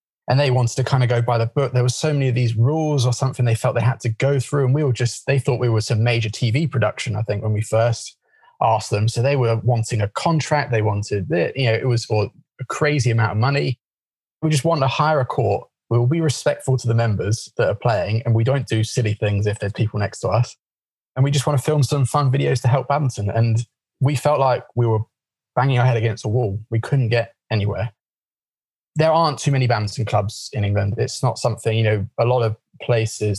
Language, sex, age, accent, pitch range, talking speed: English, male, 20-39, British, 110-130 Hz, 245 wpm